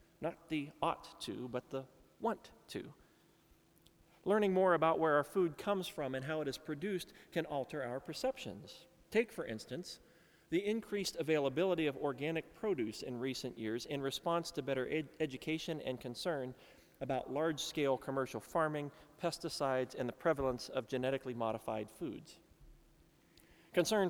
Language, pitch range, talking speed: English, 130-170 Hz, 140 wpm